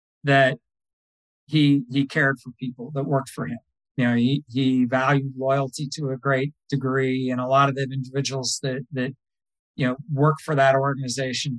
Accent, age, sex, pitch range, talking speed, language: American, 40-59, male, 125-145 Hz, 175 wpm, English